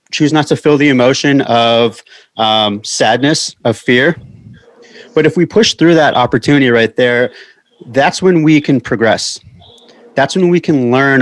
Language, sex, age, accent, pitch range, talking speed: English, male, 30-49, American, 125-155 Hz, 160 wpm